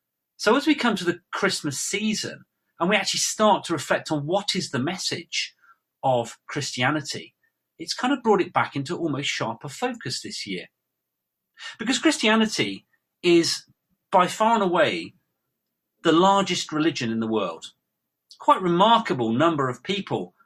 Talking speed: 155 wpm